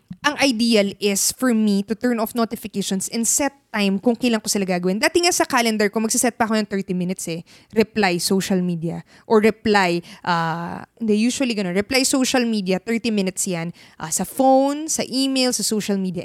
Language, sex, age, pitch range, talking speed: Filipino, female, 20-39, 190-250 Hz, 190 wpm